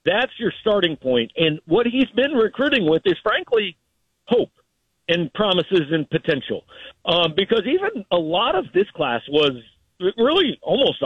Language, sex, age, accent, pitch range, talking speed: English, male, 50-69, American, 135-190 Hz, 150 wpm